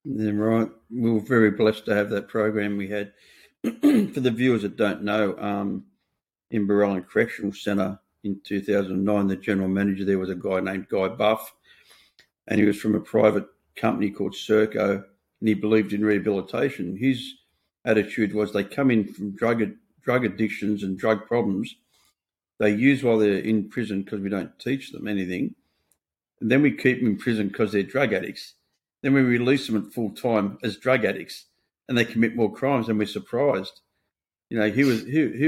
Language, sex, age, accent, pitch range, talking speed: English, male, 50-69, Australian, 100-115 Hz, 190 wpm